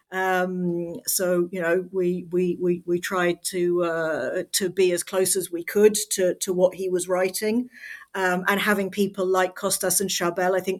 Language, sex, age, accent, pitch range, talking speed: English, female, 50-69, British, 175-195 Hz, 190 wpm